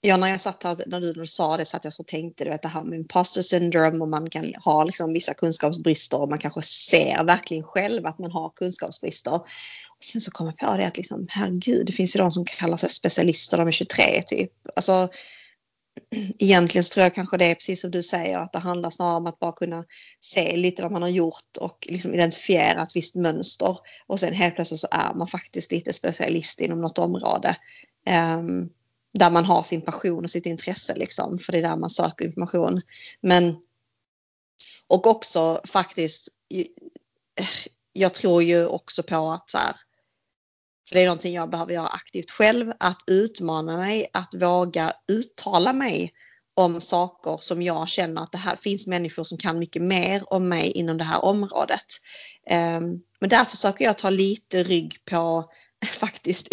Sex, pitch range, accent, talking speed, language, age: female, 165-190 Hz, Swedish, 190 wpm, English, 30-49